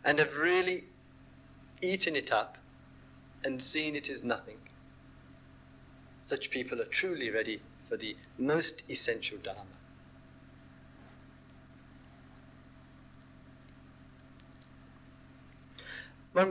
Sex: male